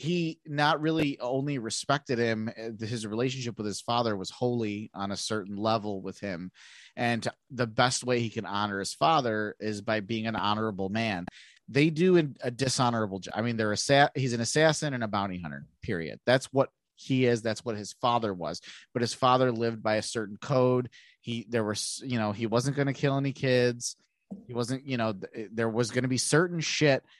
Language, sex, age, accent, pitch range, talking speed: English, male, 30-49, American, 110-135 Hz, 205 wpm